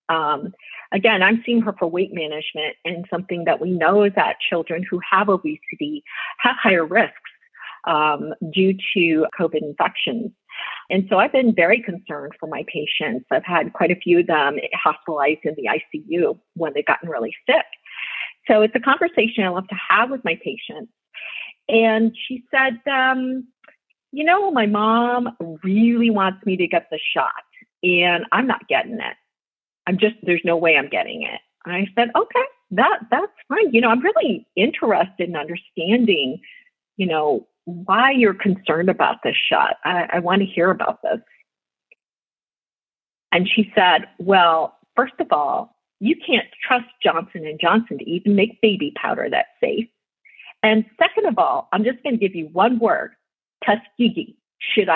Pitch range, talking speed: 175-245 Hz, 170 wpm